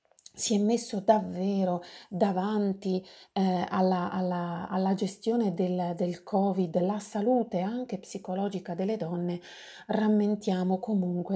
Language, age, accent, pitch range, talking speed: Italian, 30-49, native, 180-210 Hz, 105 wpm